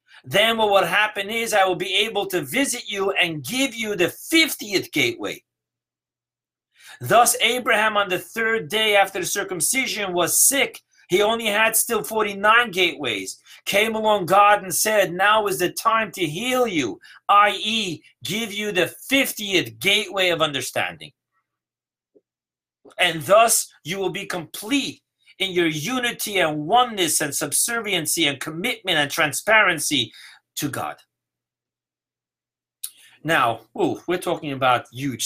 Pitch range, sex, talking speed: 150-210 Hz, male, 135 wpm